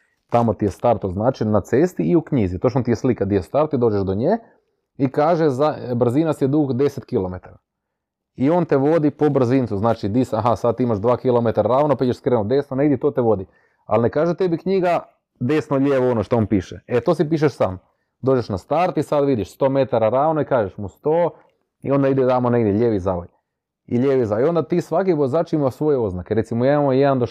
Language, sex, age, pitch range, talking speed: Croatian, male, 30-49, 110-150 Hz, 210 wpm